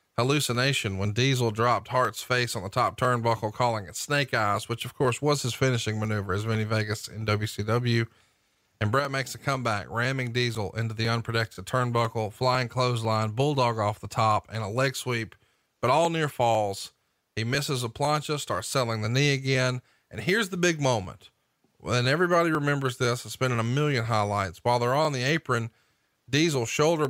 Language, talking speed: English, 180 wpm